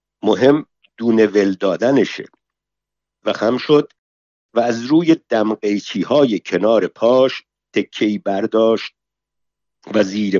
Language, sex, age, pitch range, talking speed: Persian, male, 50-69, 105-130 Hz, 100 wpm